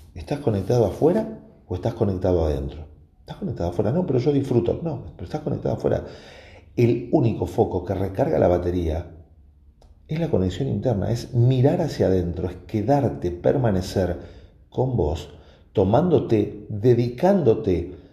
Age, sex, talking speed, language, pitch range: 40-59, male, 135 wpm, Spanish, 80-115 Hz